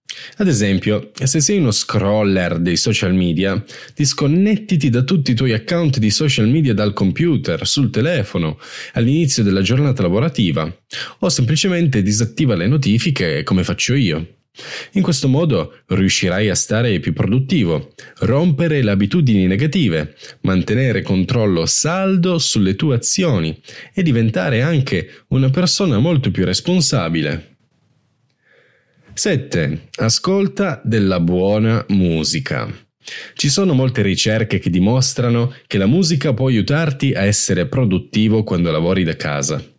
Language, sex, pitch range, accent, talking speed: Italian, male, 100-150 Hz, native, 125 wpm